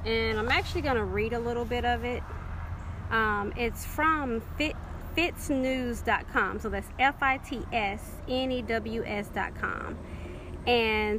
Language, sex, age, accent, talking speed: English, female, 30-49, American, 95 wpm